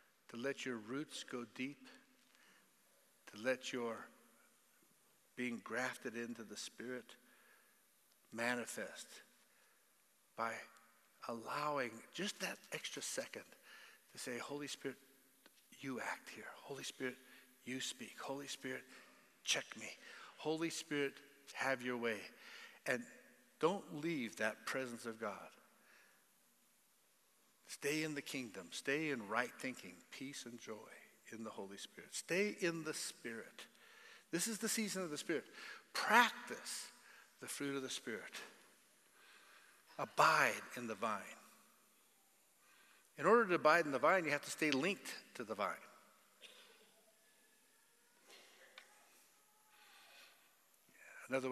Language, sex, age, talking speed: English, male, 60-79, 115 wpm